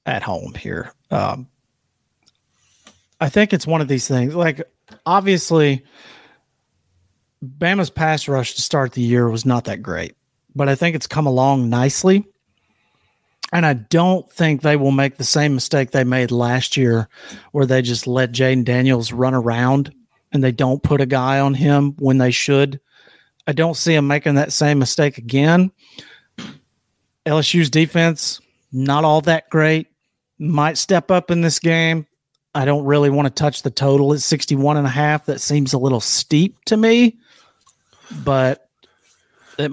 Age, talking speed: 40-59, 155 wpm